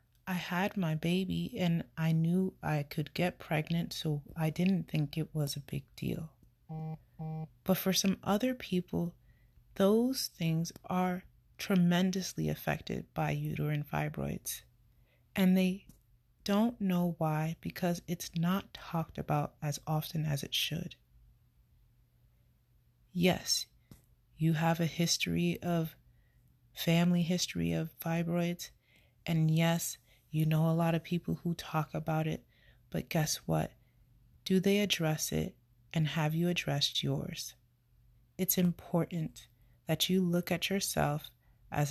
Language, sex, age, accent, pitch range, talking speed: English, female, 30-49, American, 120-175 Hz, 130 wpm